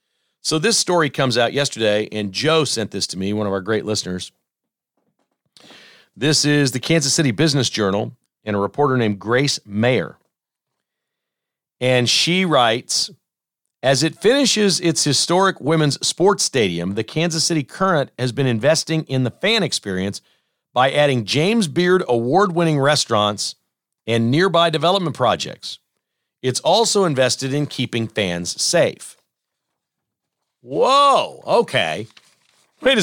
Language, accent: English, American